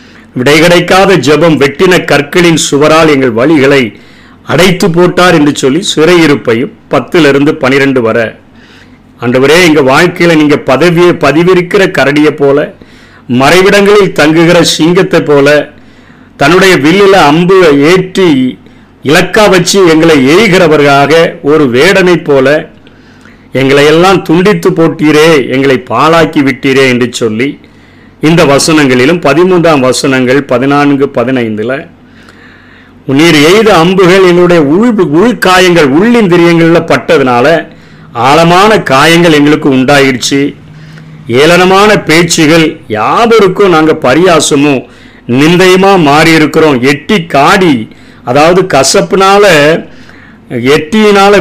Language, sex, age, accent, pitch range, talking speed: Tamil, male, 40-59, native, 140-180 Hz, 90 wpm